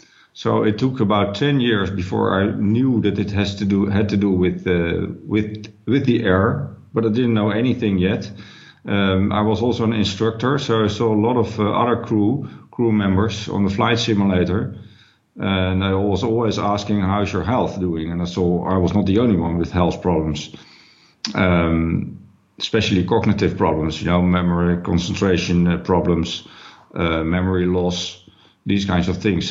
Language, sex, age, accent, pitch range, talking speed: English, male, 50-69, Dutch, 95-115 Hz, 180 wpm